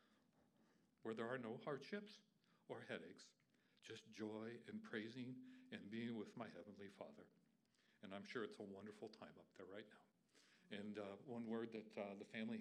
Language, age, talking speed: English, 60-79, 170 wpm